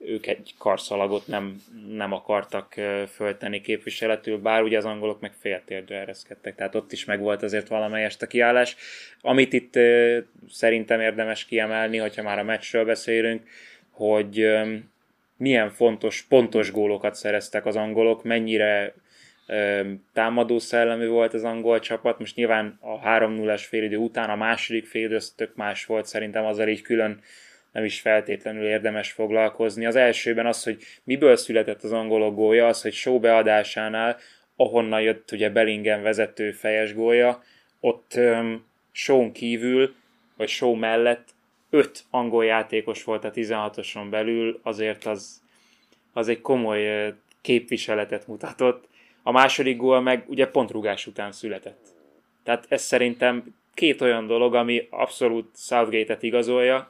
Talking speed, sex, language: 135 wpm, male, Hungarian